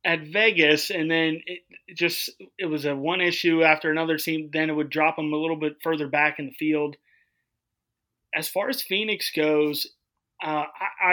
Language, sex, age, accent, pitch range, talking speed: English, male, 30-49, American, 150-170 Hz, 180 wpm